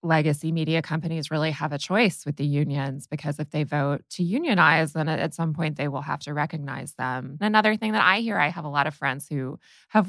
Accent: American